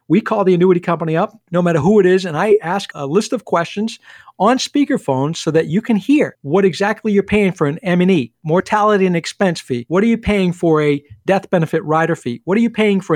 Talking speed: 235 wpm